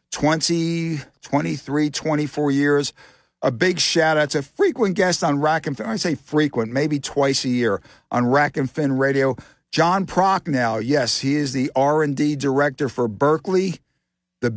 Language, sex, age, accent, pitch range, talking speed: English, male, 50-69, American, 130-155 Hz, 160 wpm